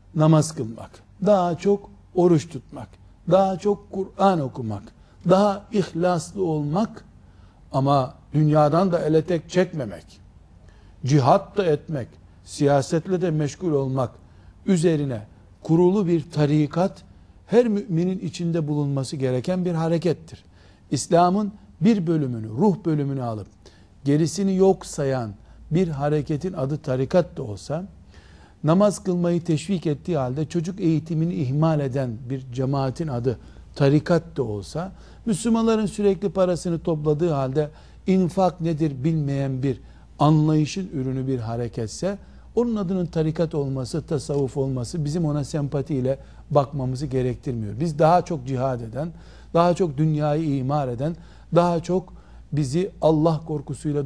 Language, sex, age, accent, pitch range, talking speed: Turkish, male, 60-79, native, 130-175 Hz, 115 wpm